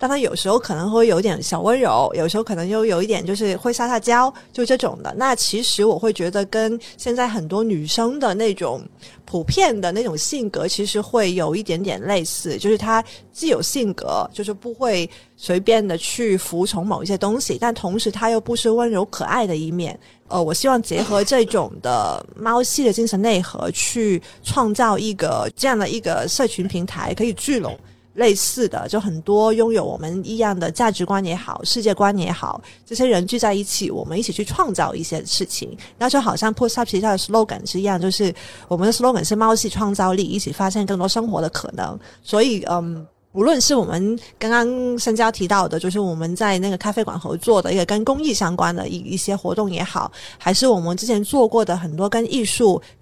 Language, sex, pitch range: Chinese, female, 185-230 Hz